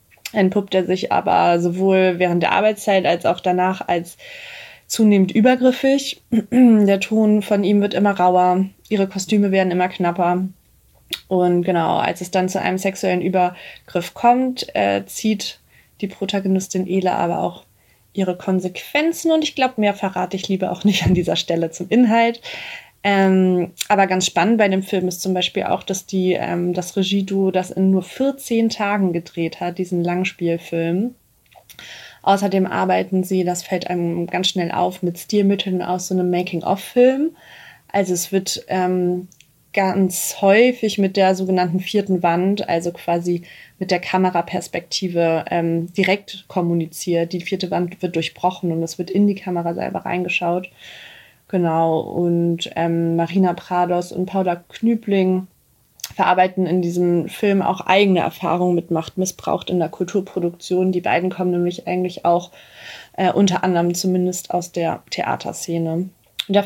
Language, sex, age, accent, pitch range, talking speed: German, female, 20-39, German, 175-195 Hz, 150 wpm